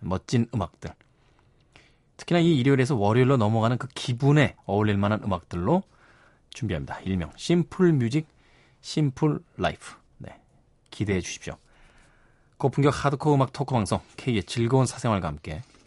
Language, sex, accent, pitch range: Korean, male, native, 100-145 Hz